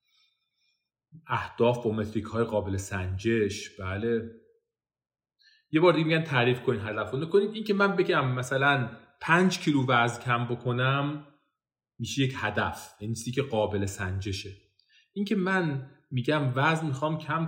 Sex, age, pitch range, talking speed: male, 30-49, 110-160 Hz, 135 wpm